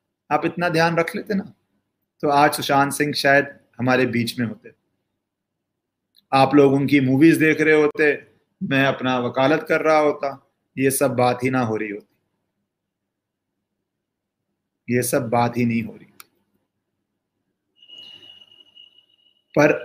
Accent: native